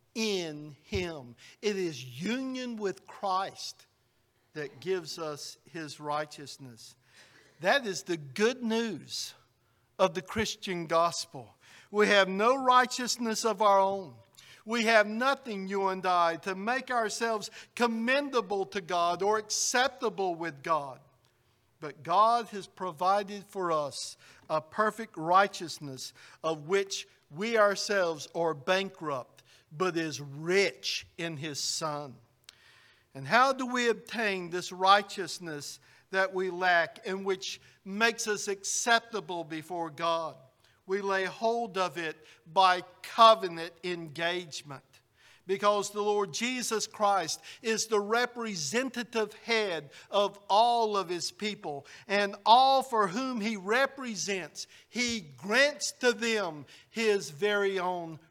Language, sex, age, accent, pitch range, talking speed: English, male, 50-69, American, 155-215 Hz, 120 wpm